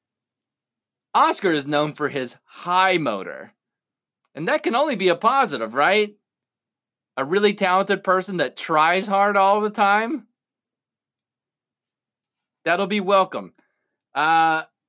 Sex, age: male, 30-49